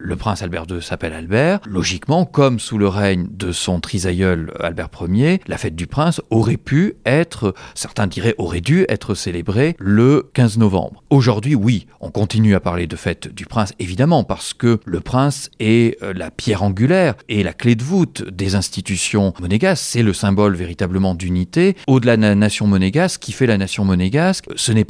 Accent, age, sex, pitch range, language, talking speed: French, 40-59, male, 95-130 Hz, French, 185 wpm